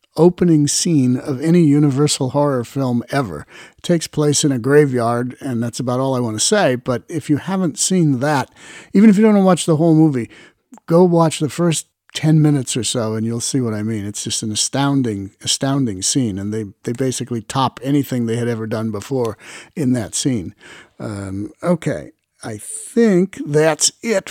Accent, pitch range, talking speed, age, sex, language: American, 130-165 Hz, 195 wpm, 50-69, male, English